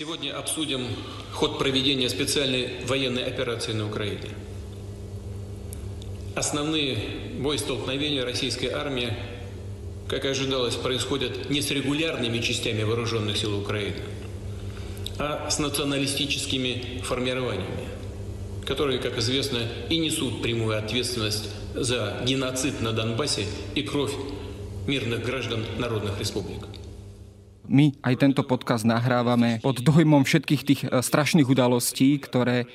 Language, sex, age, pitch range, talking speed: Slovak, male, 40-59, 115-140 Hz, 105 wpm